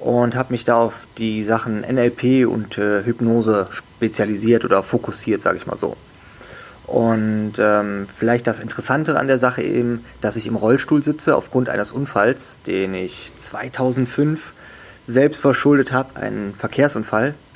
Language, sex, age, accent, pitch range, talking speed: German, male, 20-39, German, 110-130 Hz, 145 wpm